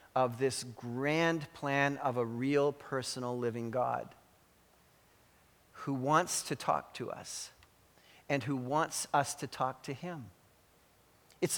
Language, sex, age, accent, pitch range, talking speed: English, male, 40-59, American, 130-185 Hz, 130 wpm